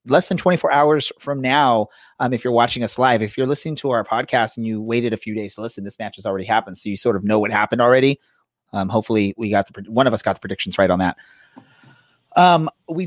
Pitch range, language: 110-140 Hz, English